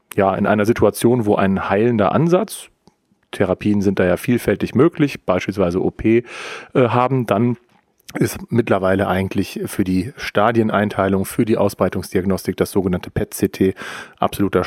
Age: 40-59